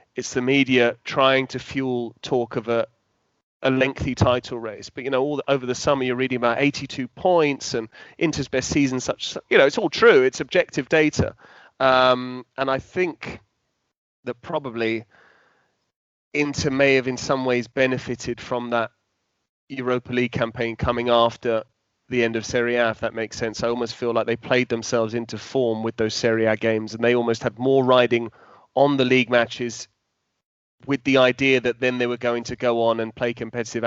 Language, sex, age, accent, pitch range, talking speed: English, male, 30-49, British, 115-135 Hz, 185 wpm